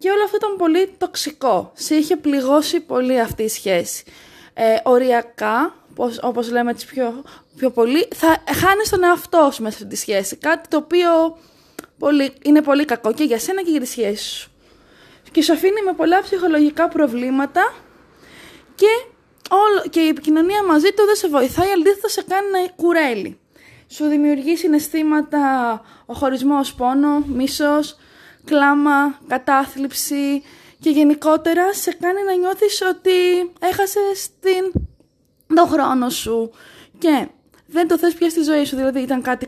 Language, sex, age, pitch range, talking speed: Greek, female, 20-39, 255-345 Hz, 145 wpm